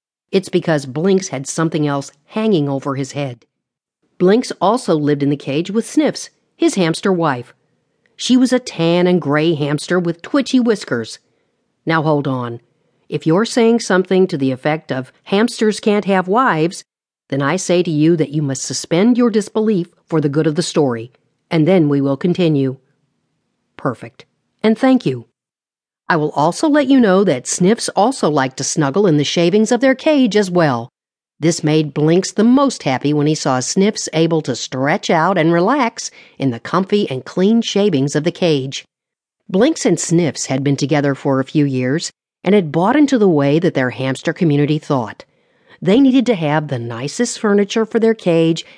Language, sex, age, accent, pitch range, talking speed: English, female, 50-69, American, 145-210 Hz, 180 wpm